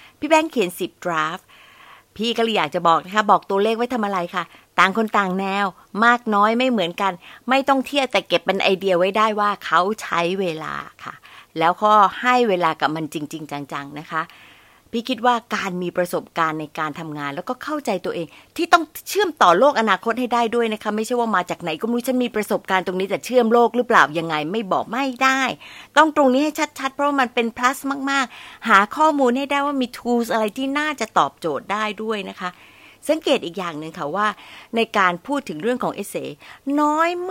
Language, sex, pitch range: Thai, female, 190-270 Hz